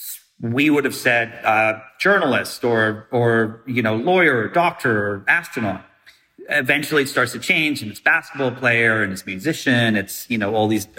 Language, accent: English, American